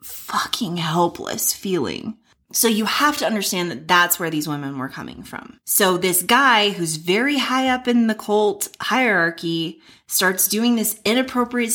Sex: female